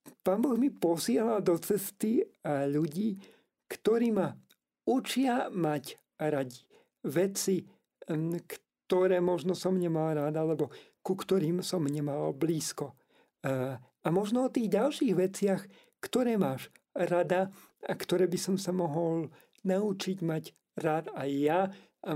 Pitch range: 160-205 Hz